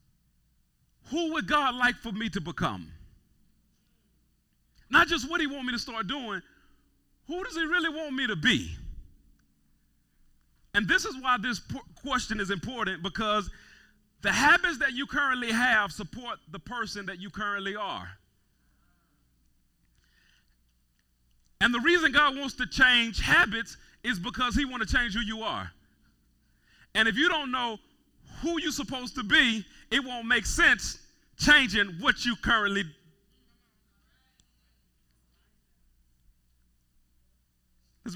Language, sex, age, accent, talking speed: English, male, 40-59, American, 130 wpm